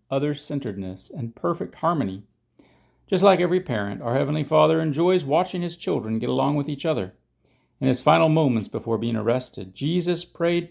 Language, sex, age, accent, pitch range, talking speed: English, male, 40-59, American, 125-180 Hz, 160 wpm